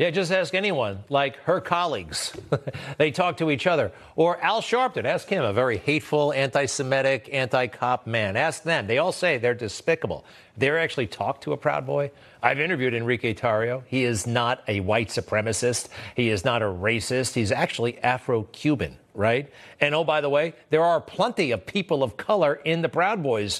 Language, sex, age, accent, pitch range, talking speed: English, male, 50-69, American, 115-160 Hz, 185 wpm